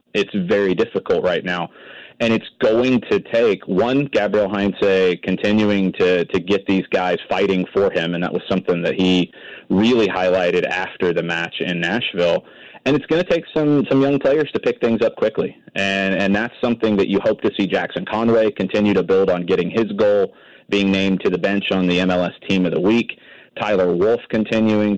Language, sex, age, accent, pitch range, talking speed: English, male, 30-49, American, 95-110 Hz, 195 wpm